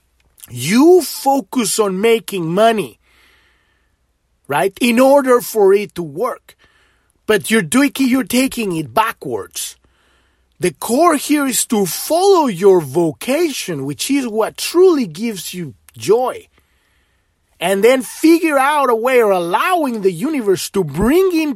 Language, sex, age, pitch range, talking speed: English, male, 30-49, 190-275 Hz, 130 wpm